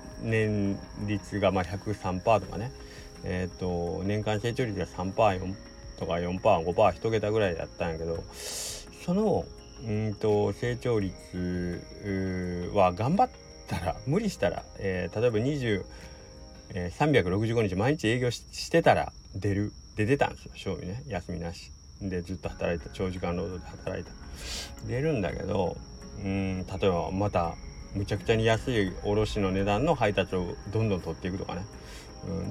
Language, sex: Japanese, male